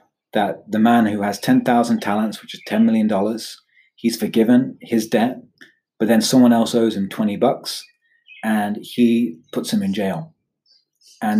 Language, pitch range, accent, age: English, 105-150 Hz, British, 30-49